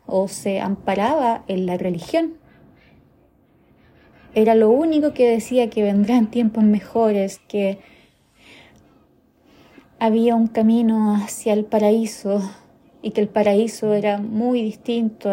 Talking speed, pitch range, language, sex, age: 115 wpm, 195-240 Hz, Spanish, female, 20-39